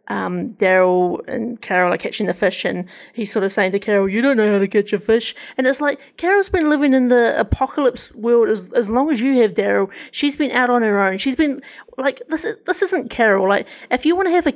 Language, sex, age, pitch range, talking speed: English, female, 30-49, 205-270 Hz, 250 wpm